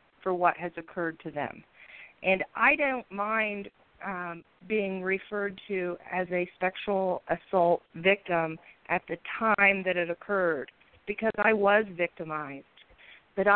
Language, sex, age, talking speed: English, female, 40-59, 135 wpm